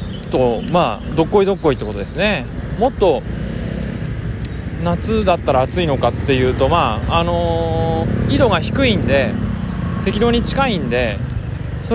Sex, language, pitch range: male, Japanese, 120-175 Hz